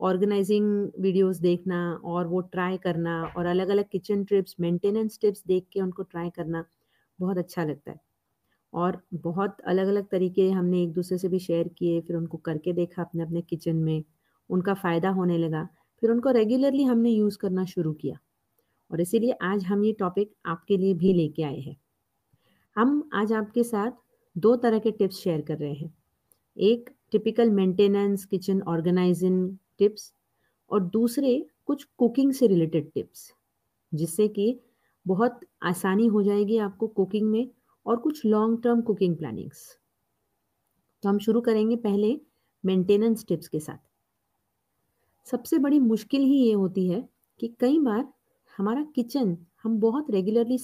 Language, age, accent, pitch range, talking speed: Hindi, 30-49, native, 170-225 Hz, 155 wpm